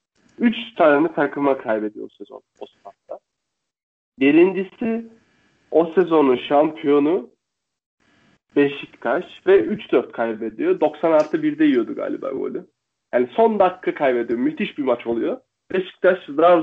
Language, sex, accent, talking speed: Turkish, male, native, 100 wpm